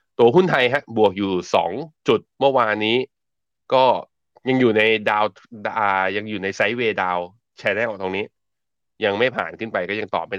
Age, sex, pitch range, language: 20-39, male, 90-115 Hz, Thai